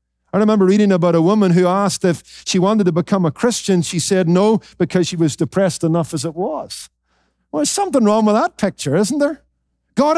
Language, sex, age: English, male, 50-69